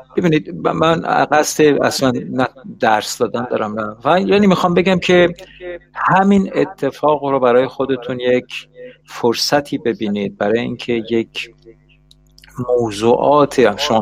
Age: 50-69